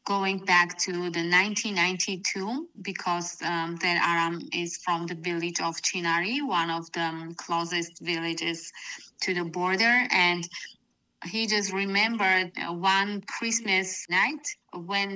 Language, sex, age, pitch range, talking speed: English, female, 20-39, 175-200 Hz, 125 wpm